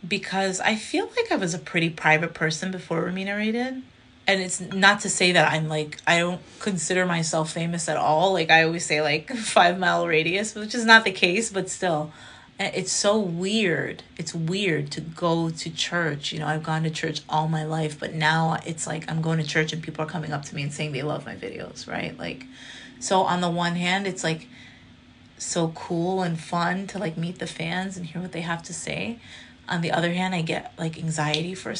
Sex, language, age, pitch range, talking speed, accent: female, English, 30-49, 155-185 Hz, 220 wpm, American